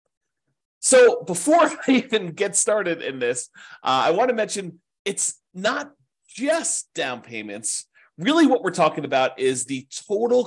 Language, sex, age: English, male, 40-59